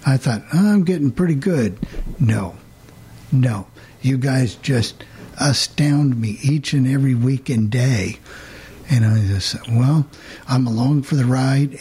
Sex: male